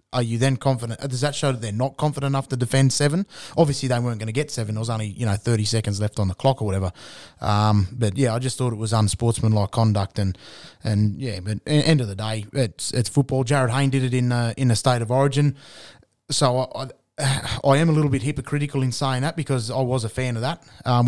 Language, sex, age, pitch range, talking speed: English, male, 20-39, 110-135 Hz, 250 wpm